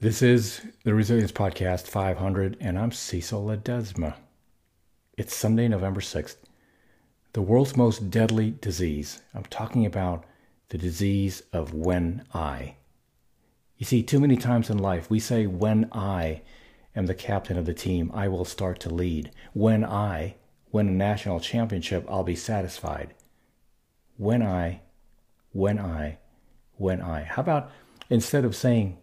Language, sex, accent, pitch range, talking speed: English, male, American, 90-115 Hz, 145 wpm